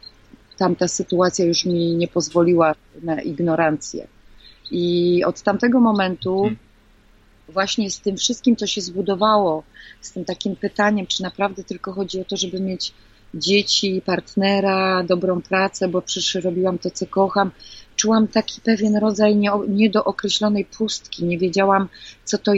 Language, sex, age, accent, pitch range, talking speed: Polish, female, 30-49, native, 185-210 Hz, 135 wpm